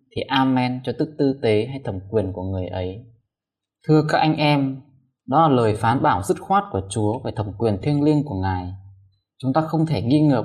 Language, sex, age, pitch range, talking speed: Vietnamese, male, 20-39, 105-145 Hz, 220 wpm